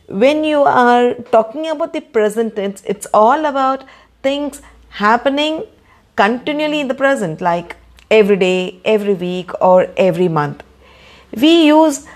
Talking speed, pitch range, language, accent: 135 wpm, 185-260 Hz, English, Indian